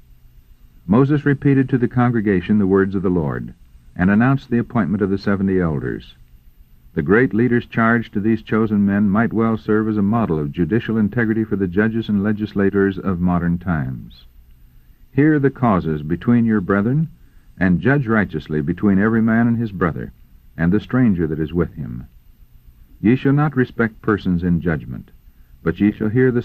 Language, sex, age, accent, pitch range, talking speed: English, male, 60-79, American, 70-115 Hz, 175 wpm